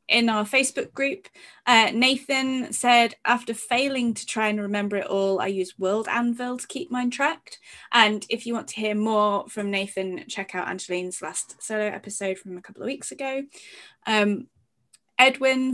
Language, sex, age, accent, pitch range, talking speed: English, female, 20-39, British, 190-250 Hz, 175 wpm